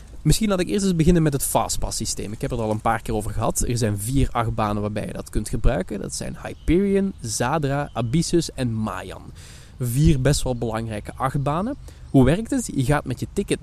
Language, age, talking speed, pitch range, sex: Dutch, 20-39, 210 wpm, 115-155 Hz, male